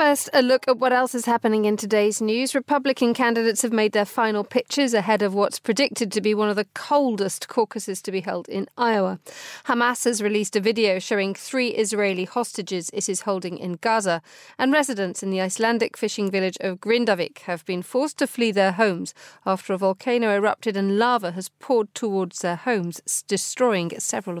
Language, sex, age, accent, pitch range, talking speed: English, female, 40-59, British, 185-235 Hz, 190 wpm